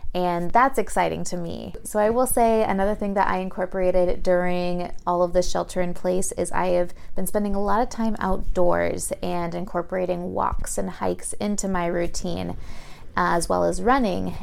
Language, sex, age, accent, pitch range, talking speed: English, female, 20-39, American, 170-205 Hz, 180 wpm